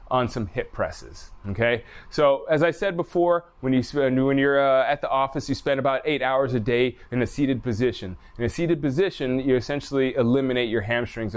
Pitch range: 110-135 Hz